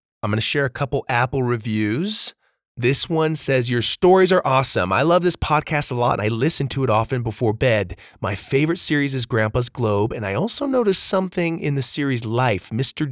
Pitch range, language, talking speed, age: 105-145 Hz, English, 205 wpm, 30-49